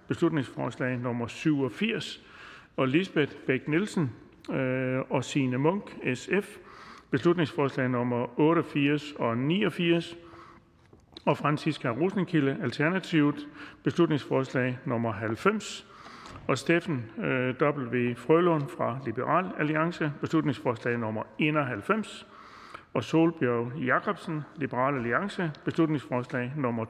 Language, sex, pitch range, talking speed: Danish, male, 130-165 Hz, 95 wpm